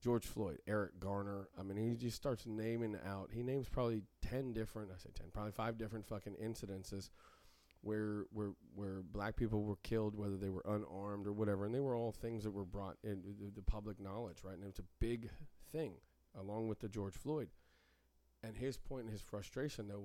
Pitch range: 100-120 Hz